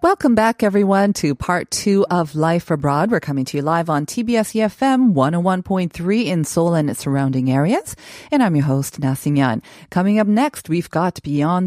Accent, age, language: American, 40-59, Korean